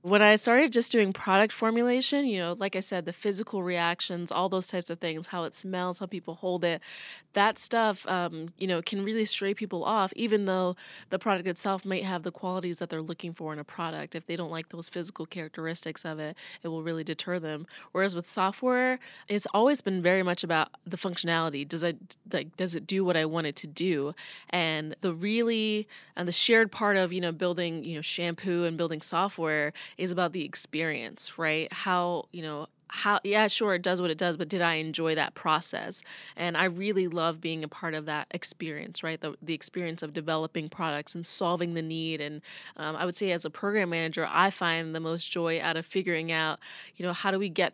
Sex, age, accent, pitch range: female, 20-39, American, 160-190 Hz